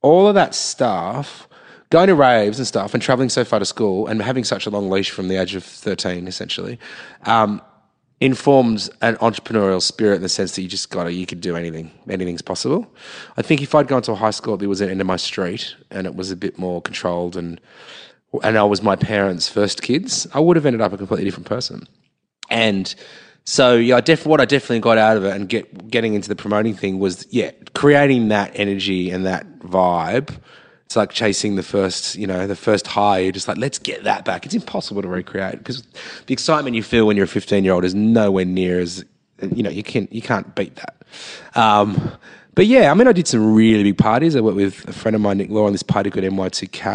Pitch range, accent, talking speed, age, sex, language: 95-115 Hz, Australian, 230 wpm, 30-49, male, English